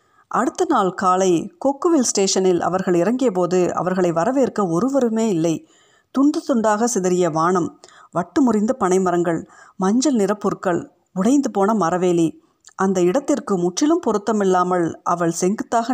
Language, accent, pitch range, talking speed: Tamil, native, 180-245 Hz, 110 wpm